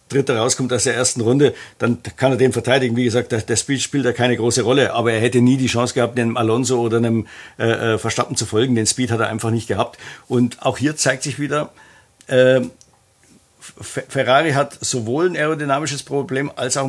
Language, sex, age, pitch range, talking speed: German, male, 50-69, 125-145 Hz, 195 wpm